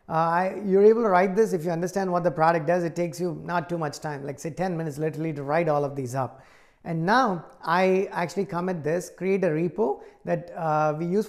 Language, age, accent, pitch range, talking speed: English, 30-49, Indian, 160-190 Hz, 240 wpm